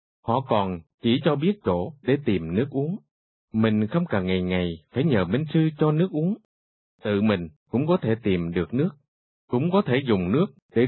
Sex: male